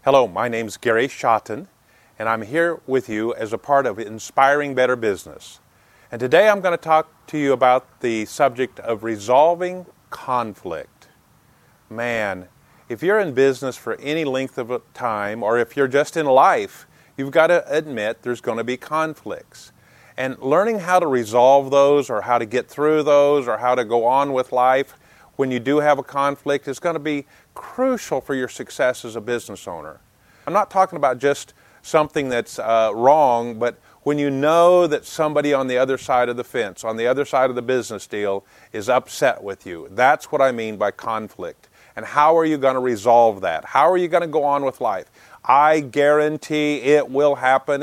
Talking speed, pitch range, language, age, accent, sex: 195 wpm, 120-150 Hz, English, 30-49, American, male